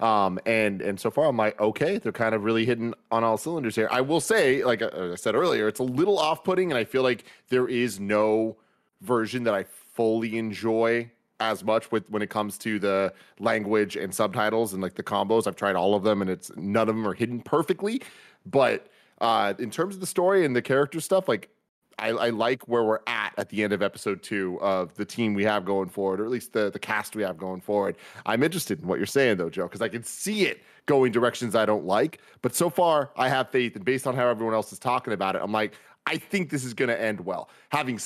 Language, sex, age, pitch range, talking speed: English, male, 30-49, 105-130 Hz, 245 wpm